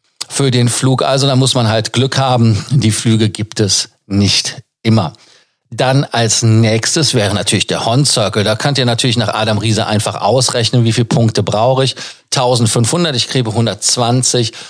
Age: 40-59